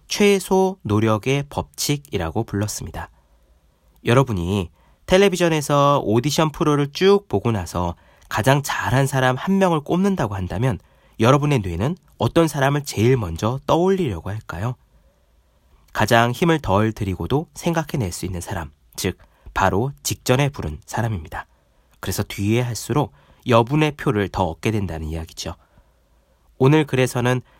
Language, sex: Korean, male